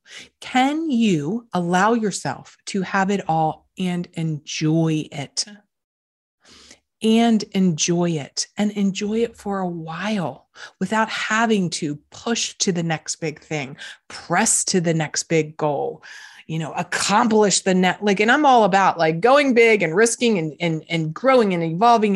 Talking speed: 150 wpm